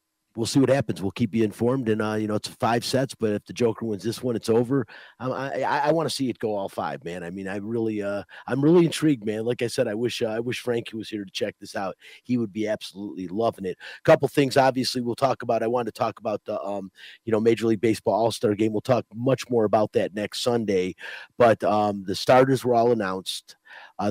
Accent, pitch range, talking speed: American, 105-125 Hz, 255 wpm